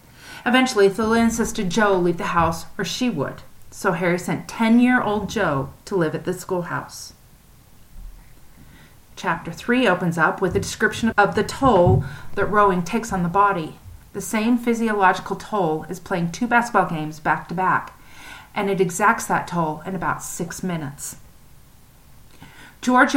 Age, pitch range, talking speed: 40-59, 165-205 Hz, 150 wpm